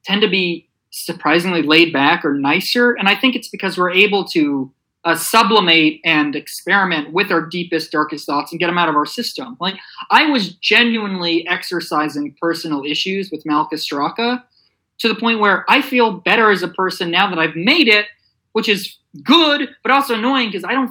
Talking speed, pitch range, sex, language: 190 wpm, 165-240 Hz, male, English